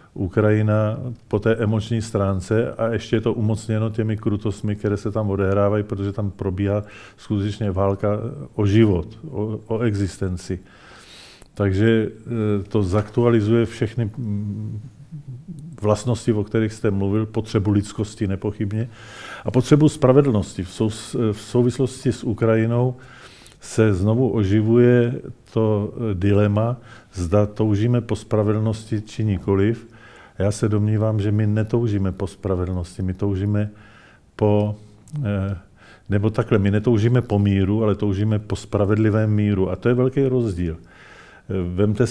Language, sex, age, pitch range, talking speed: Czech, male, 40-59, 100-115 Hz, 120 wpm